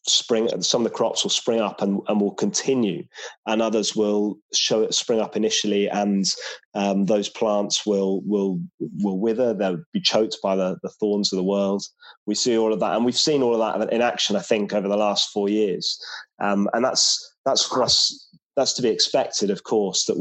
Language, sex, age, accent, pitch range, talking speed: English, male, 20-39, British, 105-125 Hz, 210 wpm